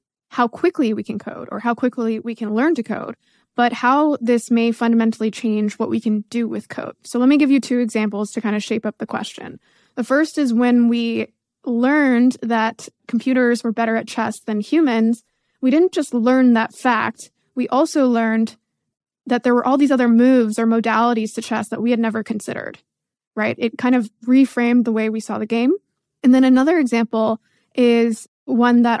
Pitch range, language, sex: 225-255 Hz, English, female